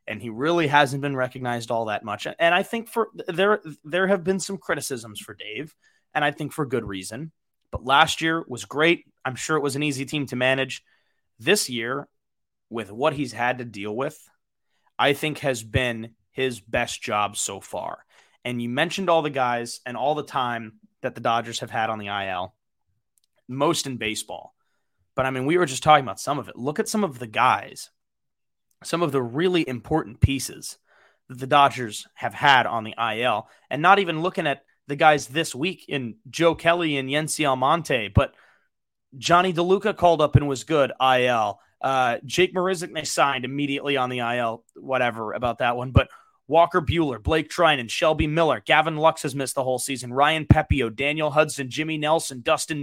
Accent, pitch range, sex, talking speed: American, 125-160 Hz, male, 195 wpm